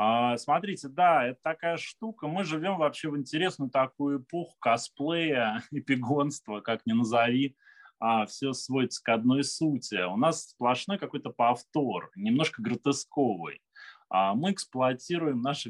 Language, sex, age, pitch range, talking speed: Russian, male, 20-39, 120-160 Hz, 120 wpm